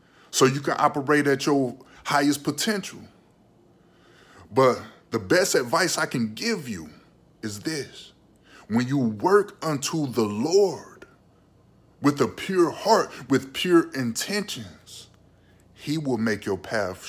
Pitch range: 110-145 Hz